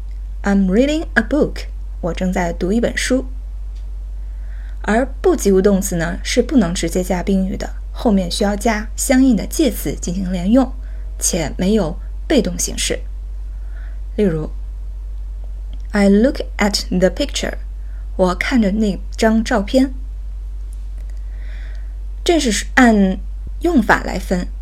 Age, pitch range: 20-39, 160-230 Hz